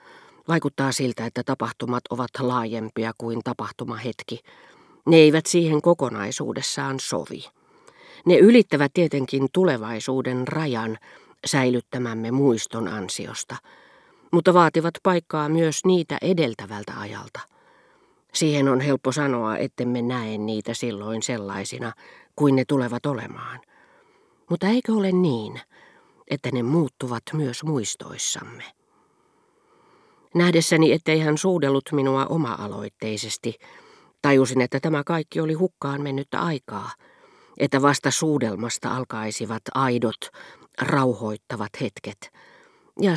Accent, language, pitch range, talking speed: native, Finnish, 120-175 Hz, 100 wpm